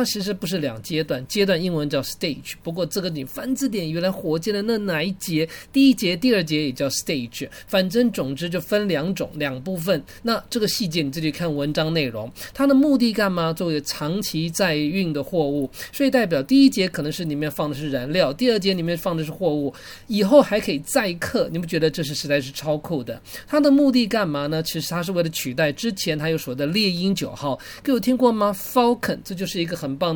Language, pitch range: English, 150-215 Hz